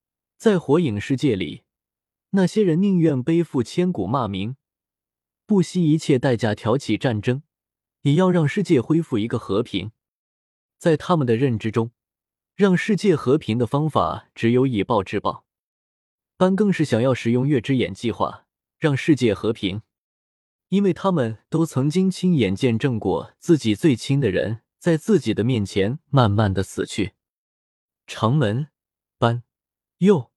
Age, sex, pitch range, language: 20-39, male, 105-160 Hz, Chinese